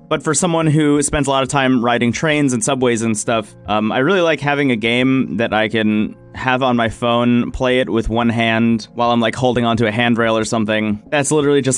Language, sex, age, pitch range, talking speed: English, male, 30-49, 115-145 Hz, 235 wpm